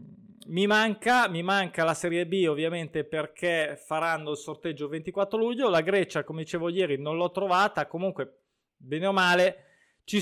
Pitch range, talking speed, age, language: 155-195 Hz, 165 wpm, 20-39, Italian